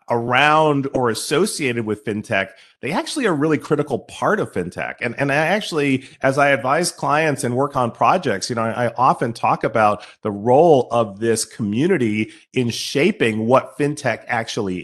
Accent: American